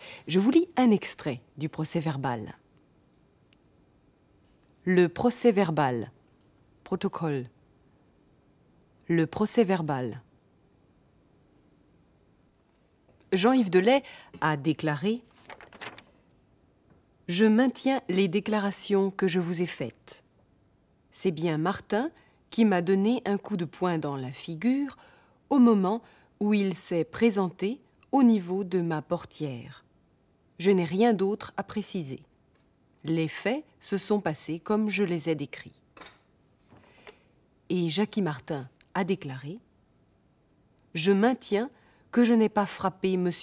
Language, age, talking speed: German, 30-49, 110 wpm